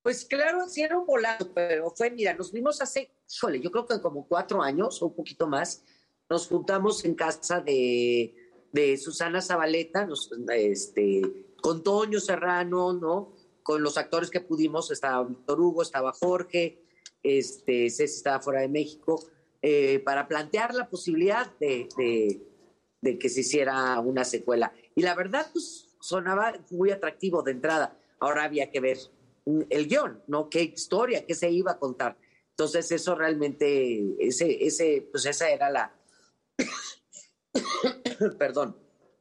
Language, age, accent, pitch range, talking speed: Spanish, 40-59, Mexican, 145-210 Hz, 150 wpm